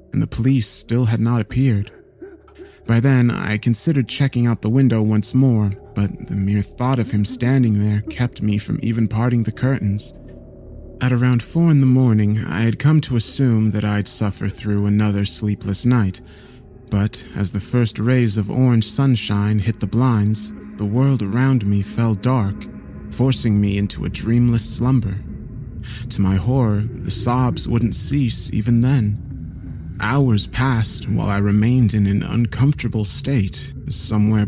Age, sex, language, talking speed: 30-49, male, English, 160 wpm